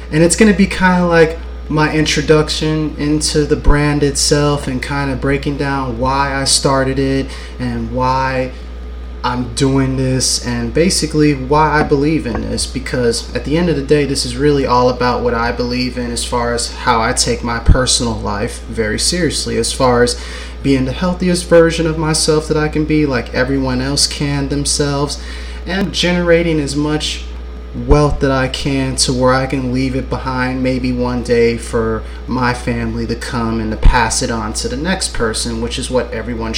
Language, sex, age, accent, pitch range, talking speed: English, male, 30-49, American, 120-150 Hz, 190 wpm